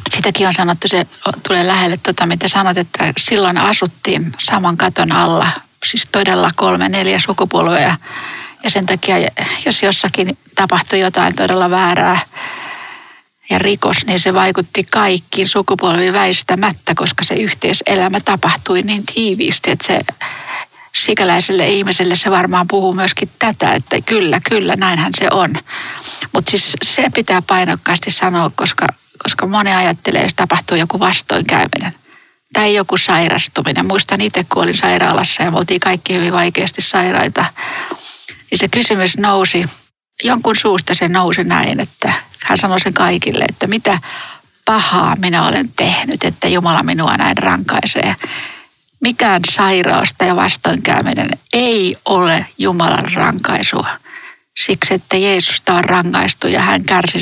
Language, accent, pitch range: Finnish, native, 180-210 Hz